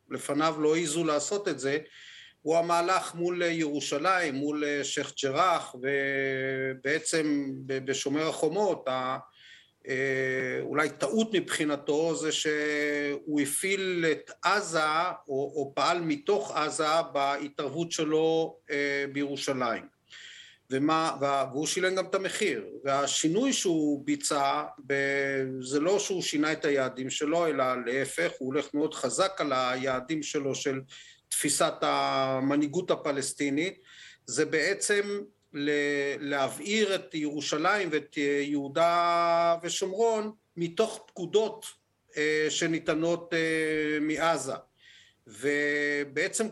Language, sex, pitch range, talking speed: Hebrew, male, 140-165 Hz, 95 wpm